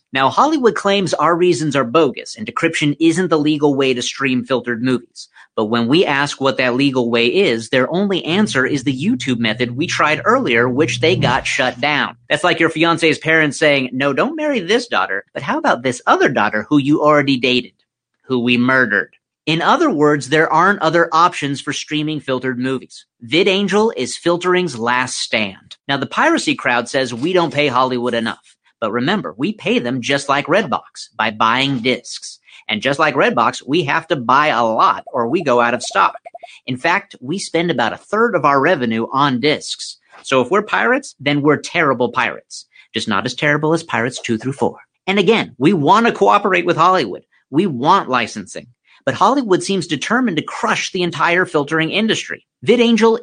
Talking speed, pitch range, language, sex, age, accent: 190 wpm, 125-175 Hz, English, male, 40-59, American